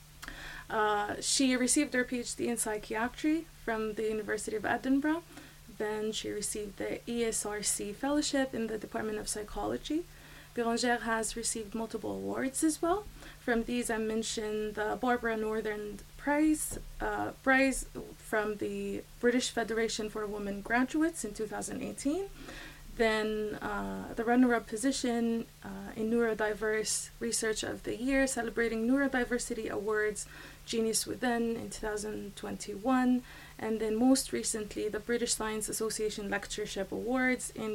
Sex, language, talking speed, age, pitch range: female, English, 125 wpm, 20-39, 210-245 Hz